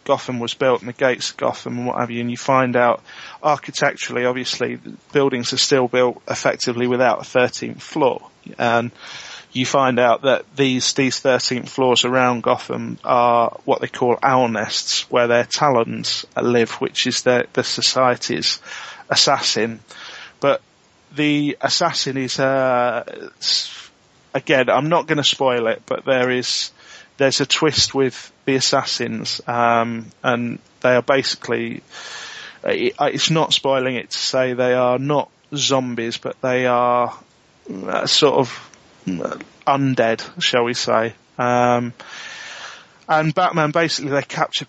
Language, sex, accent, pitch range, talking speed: English, male, British, 125-140 Hz, 140 wpm